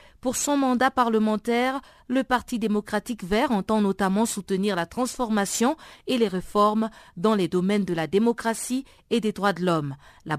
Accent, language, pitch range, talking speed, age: French, French, 205-255 Hz, 160 wpm, 50-69